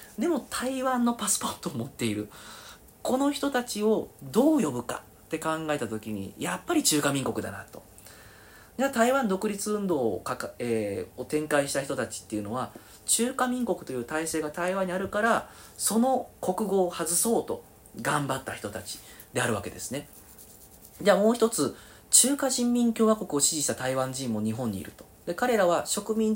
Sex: male